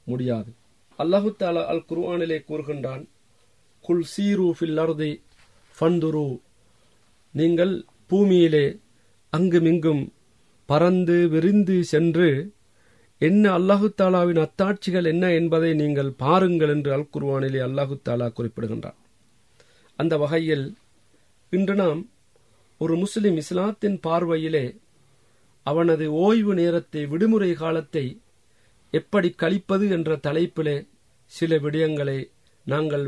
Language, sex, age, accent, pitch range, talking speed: Tamil, male, 40-59, native, 125-175 Hz, 75 wpm